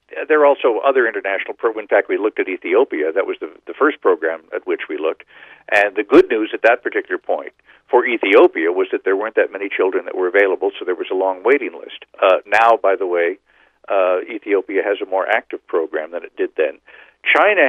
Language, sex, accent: English, male, American